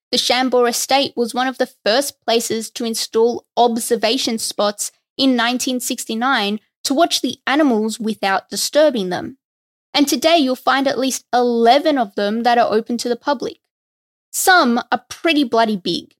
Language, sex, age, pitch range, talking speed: English, female, 20-39, 225-295 Hz, 155 wpm